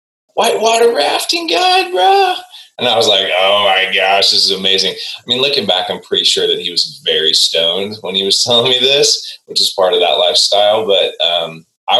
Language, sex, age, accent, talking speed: English, male, 20-39, American, 205 wpm